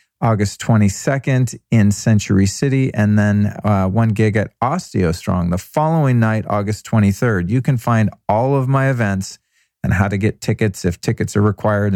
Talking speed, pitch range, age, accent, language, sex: 170 wpm, 105-130 Hz, 40-59, American, English, male